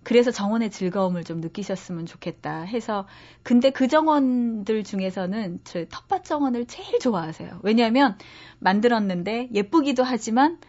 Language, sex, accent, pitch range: Korean, female, native, 180-245 Hz